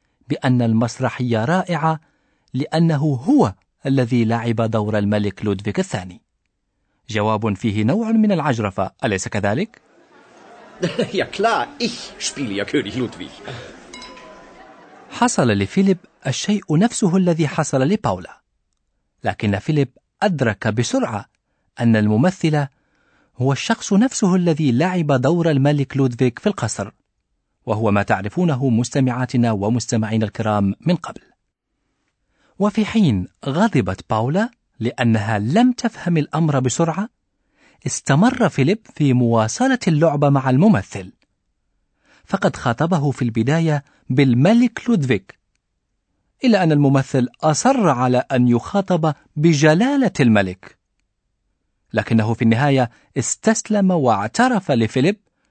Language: Arabic